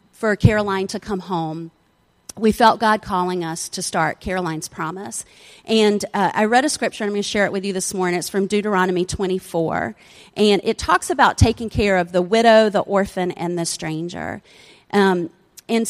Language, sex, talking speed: English, female, 185 wpm